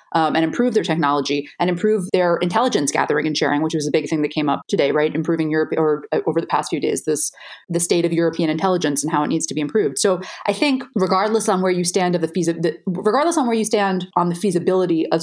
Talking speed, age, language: 255 wpm, 30-49, English